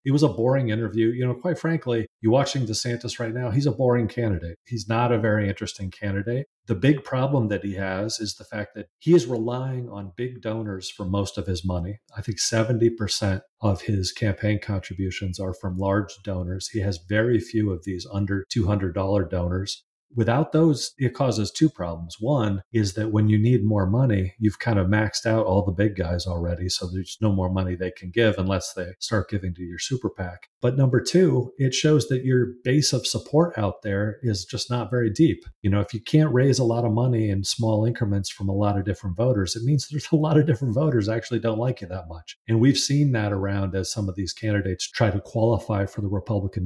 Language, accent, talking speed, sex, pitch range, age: English, American, 220 wpm, male, 100-120 Hz, 40-59